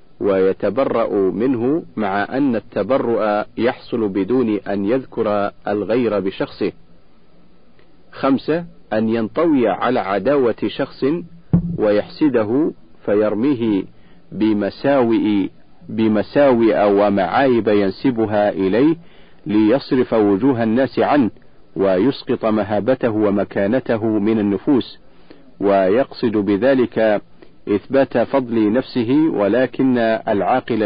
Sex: male